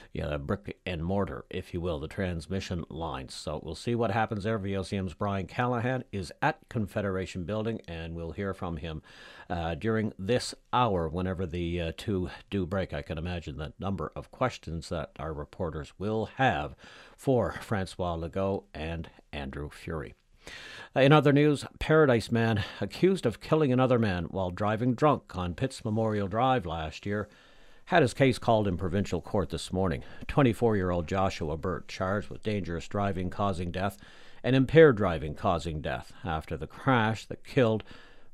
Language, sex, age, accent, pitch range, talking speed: English, male, 60-79, American, 85-115 Hz, 160 wpm